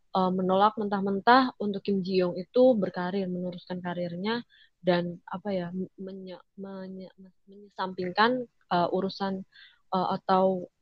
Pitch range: 180-205 Hz